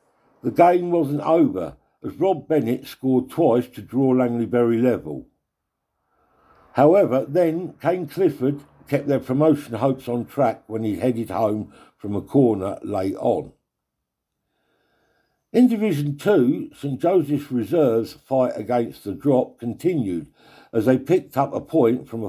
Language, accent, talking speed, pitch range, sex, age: English, British, 140 wpm, 120-165 Hz, male, 60-79